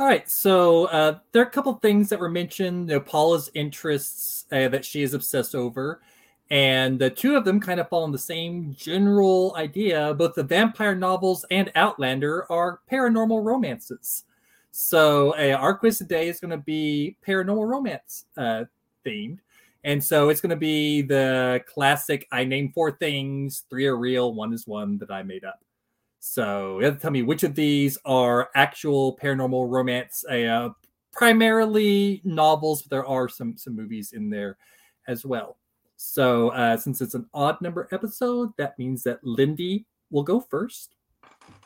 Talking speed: 175 wpm